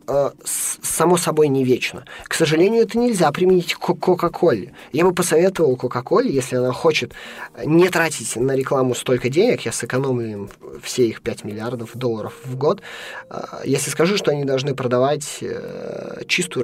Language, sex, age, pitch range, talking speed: Russian, male, 20-39, 115-165 Hz, 150 wpm